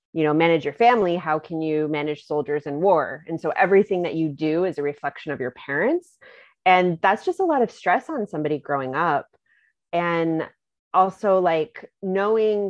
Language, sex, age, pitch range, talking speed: English, female, 30-49, 155-185 Hz, 185 wpm